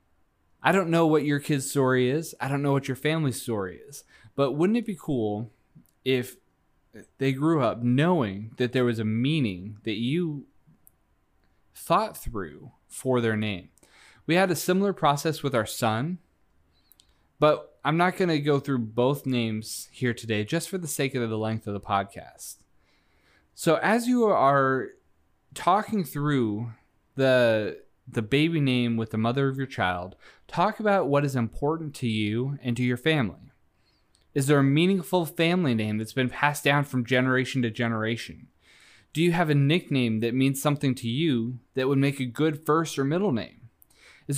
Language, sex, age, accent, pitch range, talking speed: English, male, 20-39, American, 115-155 Hz, 170 wpm